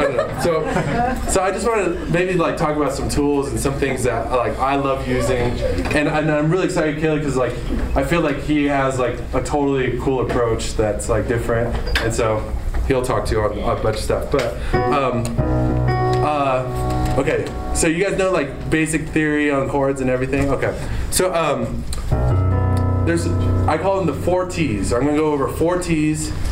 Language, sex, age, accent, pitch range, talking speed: English, male, 20-39, American, 115-155 Hz, 190 wpm